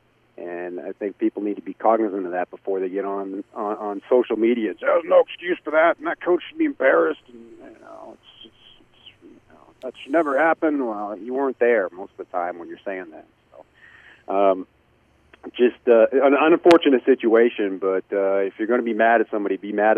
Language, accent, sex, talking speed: English, American, male, 220 wpm